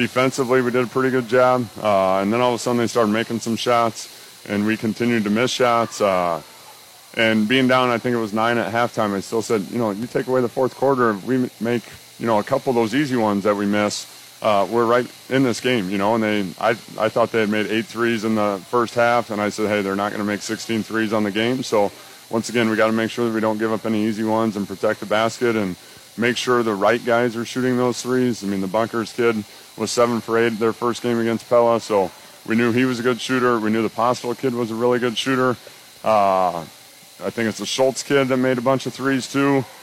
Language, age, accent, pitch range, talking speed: English, 30-49, American, 110-125 Hz, 260 wpm